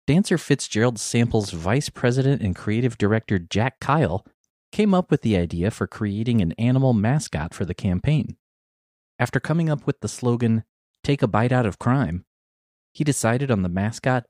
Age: 30-49